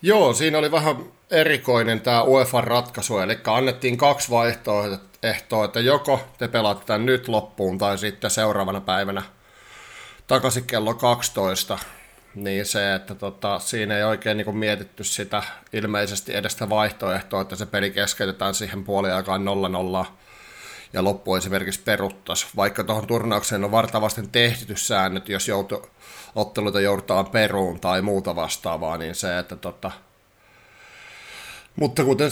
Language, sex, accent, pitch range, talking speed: Finnish, male, native, 100-120 Hz, 135 wpm